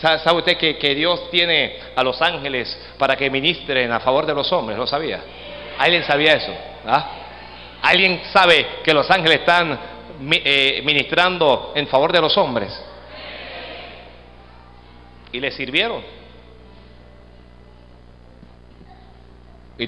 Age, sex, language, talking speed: 50-69, male, Spanish, 120 wpm